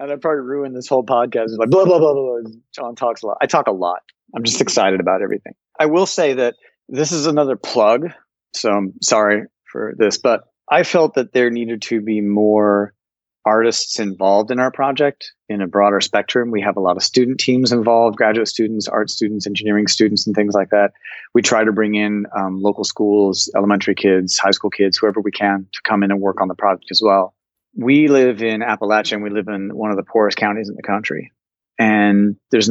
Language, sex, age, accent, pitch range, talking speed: English, male, 30-49, American, 100-120 Hz, 220 wpm